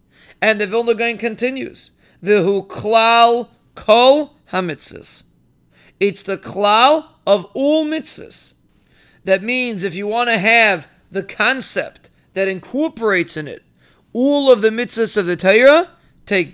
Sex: male